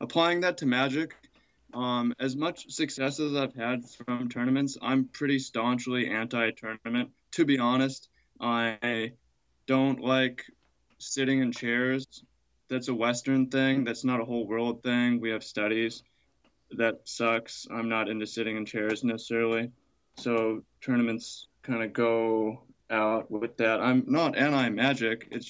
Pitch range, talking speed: 115-135 Hz, 140 wpm